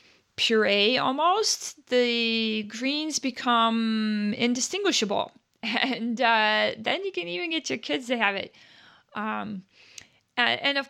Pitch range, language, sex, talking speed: 205-245 Hz, English, female, 120 wpm